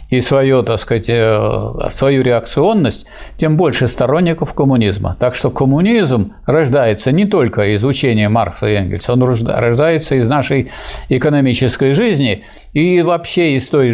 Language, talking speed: Russian, 125 wpm